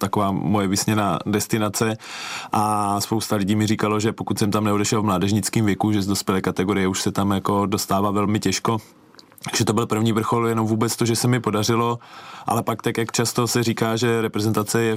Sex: male